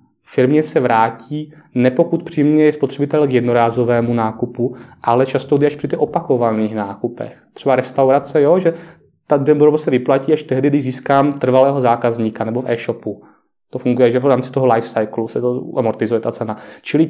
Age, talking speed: 20-39, 165 wpm